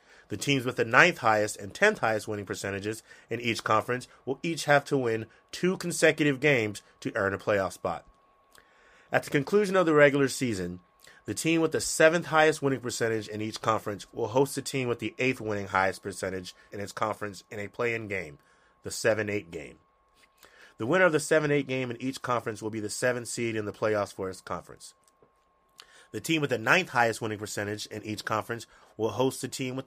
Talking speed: 205 wpm